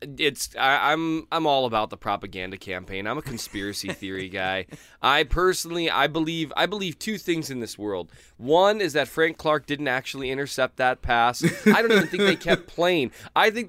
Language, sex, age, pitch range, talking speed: English, male, 20-39, 120-160 Hz, 190 wpm